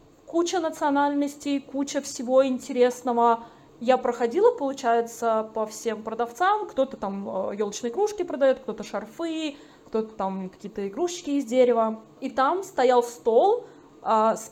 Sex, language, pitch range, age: female, Russian, 220-285 Hz, 20-39